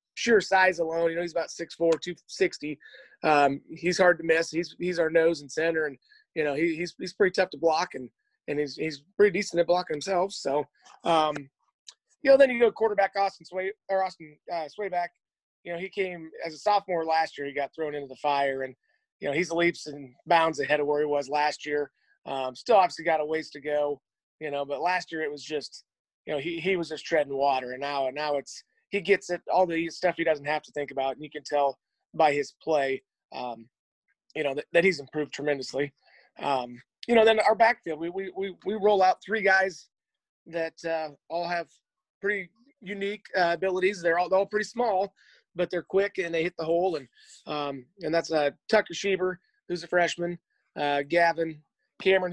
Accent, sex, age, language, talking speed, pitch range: American, male, 30-49, English, 205 wpm, 150-185 Hz